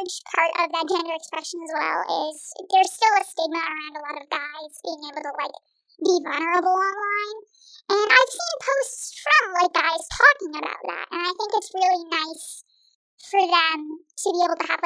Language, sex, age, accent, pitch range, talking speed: English, male, 10-29, American, 320-380 Hz, 190 wpm